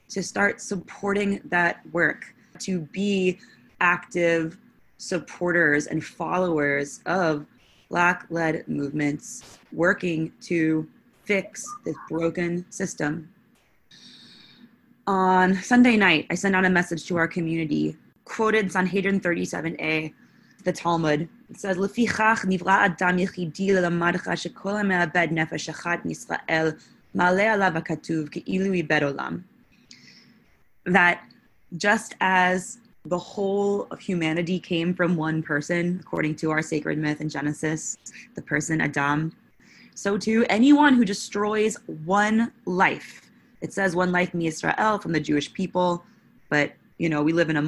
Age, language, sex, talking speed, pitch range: 20-39, English, female, 105 wpm, 160-195 Hz